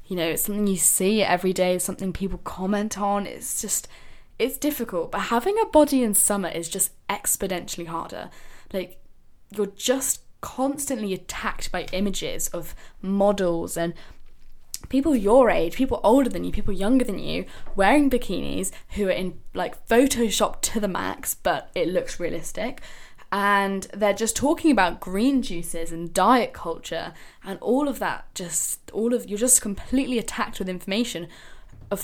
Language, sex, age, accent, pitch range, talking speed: English, female, 10-29, British, 180-235 Hz, 160 wpm